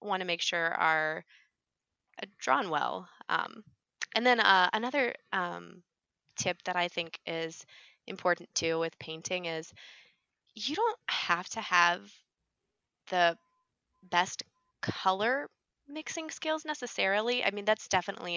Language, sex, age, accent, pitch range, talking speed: English, female, 20-39, American, 165-220 Hz, 125 wpm